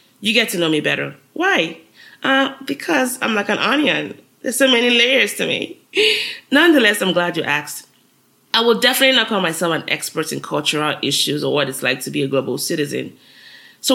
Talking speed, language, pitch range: 195 wpm, English, 165-235 Hz